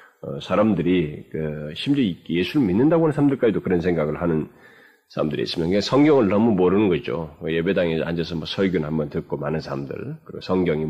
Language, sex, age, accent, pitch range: Korean, male, 30-49, native, 80-115 Hz